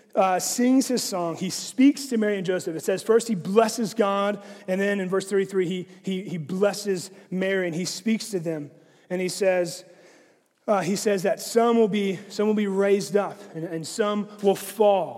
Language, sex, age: English, male, 30-49